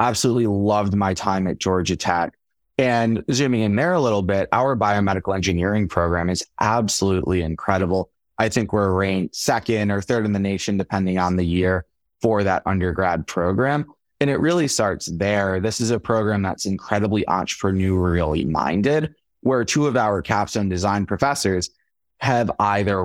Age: 20-39